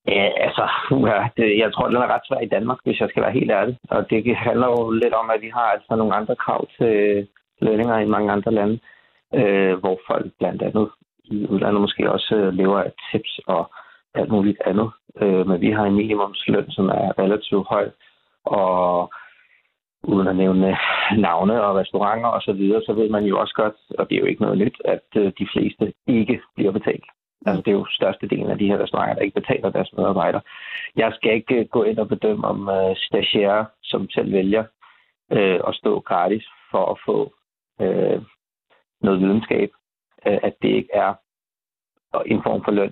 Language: Danish